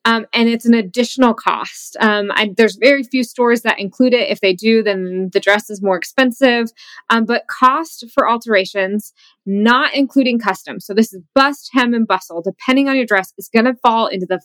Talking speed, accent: 200 wpm, American